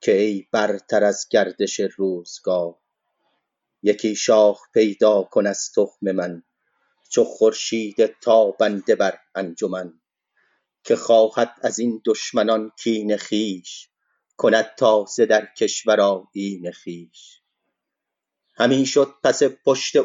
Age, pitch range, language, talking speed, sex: 30-49, 115-180 Hz, Persian, 100 wpm, male